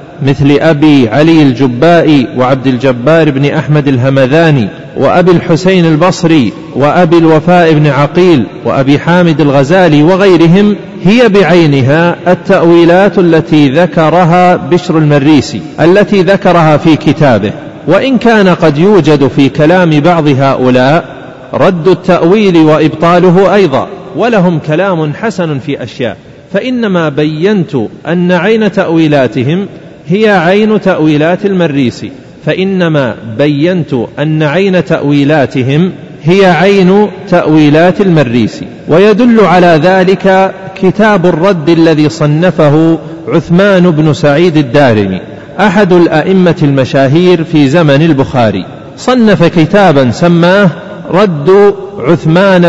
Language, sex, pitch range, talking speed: Arabic, male, 150-185 Hz, 100 wpm